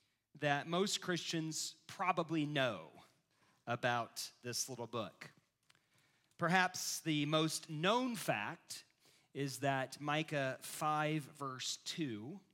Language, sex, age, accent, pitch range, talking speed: English, male, 40-59, American, 130-160 Hz, 95 wpm